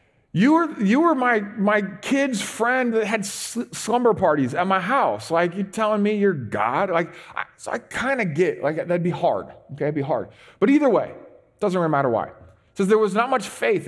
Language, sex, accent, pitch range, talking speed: English, male, American, 130-205 Hz, 225 wpm